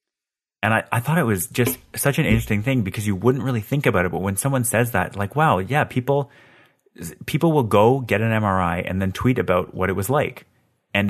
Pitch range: 90-115 Hz